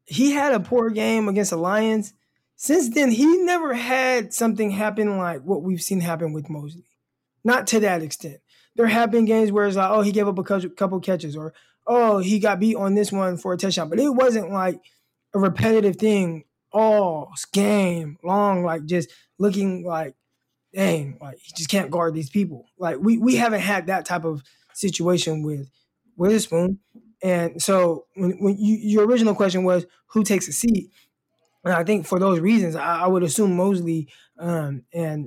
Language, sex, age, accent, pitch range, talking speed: English, male, 20-39, American, 165-210 Hz, 190 wpm